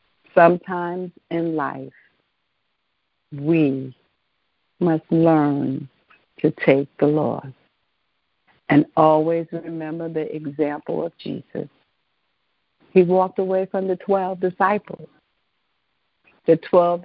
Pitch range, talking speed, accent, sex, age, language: 150-185 Hz, 90 wpm, American, female, 60-79, English